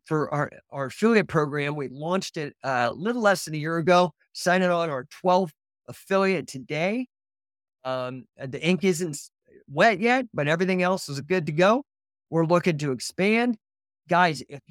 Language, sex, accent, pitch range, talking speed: English, male, American, 135-190 Hz, 165 wpm